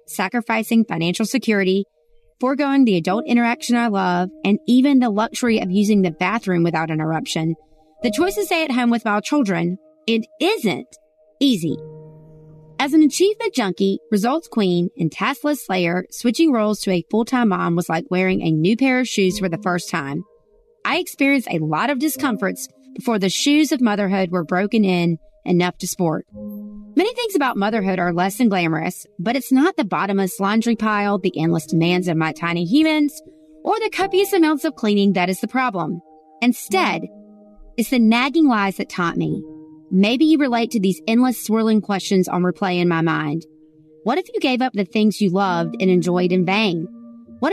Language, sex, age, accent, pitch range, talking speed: English, female, 30-49, American, 175-250 Hz, 180 wpm